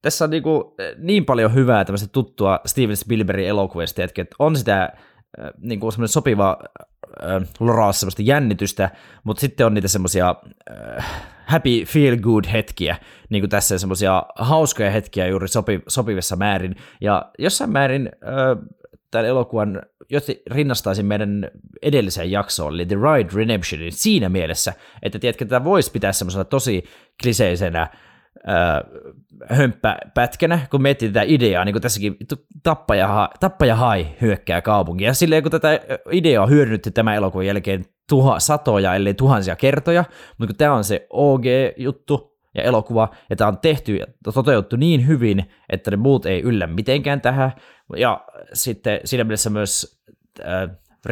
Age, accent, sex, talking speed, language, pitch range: 20-39, native, male, 135 wpm, Finnish, 95-135 Hz